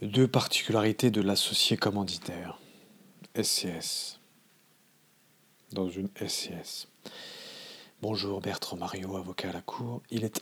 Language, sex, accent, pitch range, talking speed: English, male, French, 100-125 Hz, 105 wpm